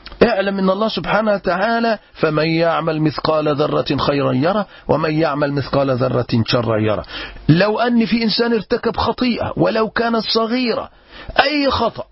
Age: 40-59